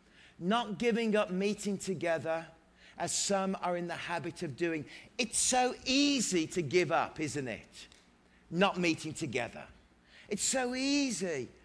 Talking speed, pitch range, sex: 140 wpm, 165-240 Hz, male